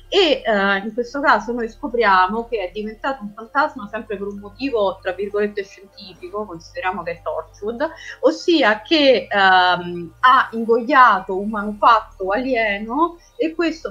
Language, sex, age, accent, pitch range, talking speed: Italian, female, 30-49, native, 185-240 Hz, 140 wpm